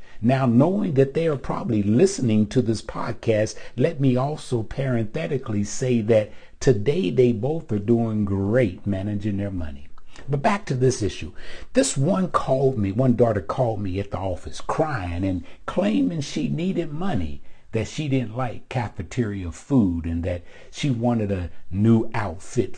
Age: 60-79